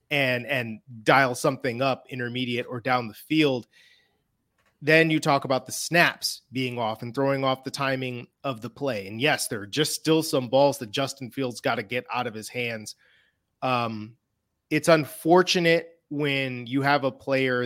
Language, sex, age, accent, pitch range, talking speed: English, male, 30-49, American, 130-160 Hz, 175 wpm